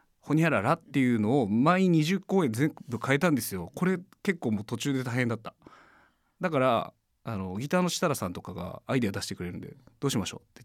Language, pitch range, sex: Japanese, 105-165 Hz, male